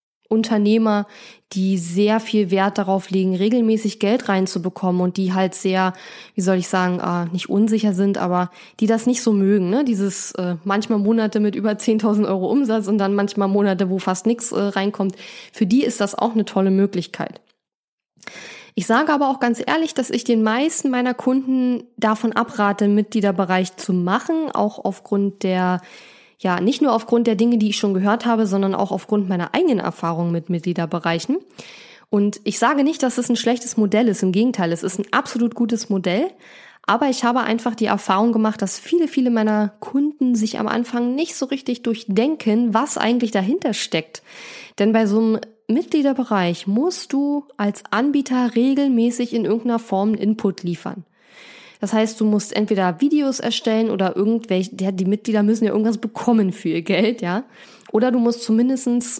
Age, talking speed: 10-29, 175 wpm